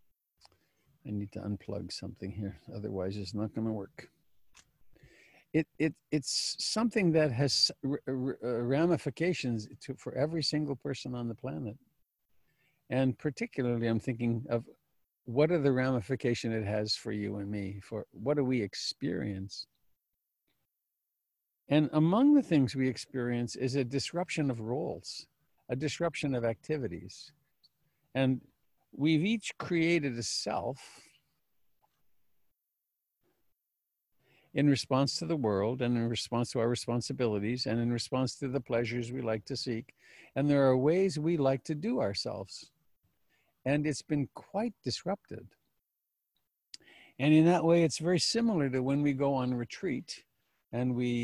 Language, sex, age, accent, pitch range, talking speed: English, male, 50-69, American, 115-150 Hz, 140 wpm